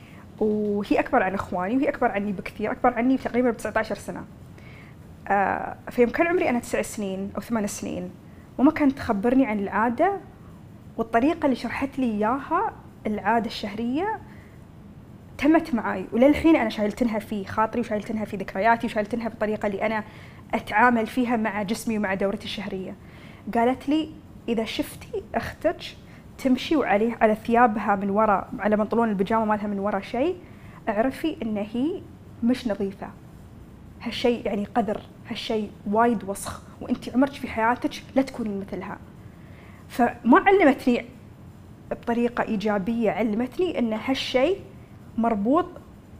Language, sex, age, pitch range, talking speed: Arabic, female, 20-39, 210-260 Hz, 130 wpm